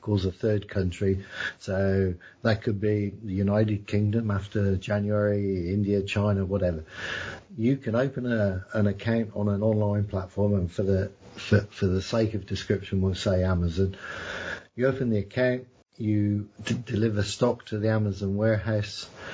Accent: British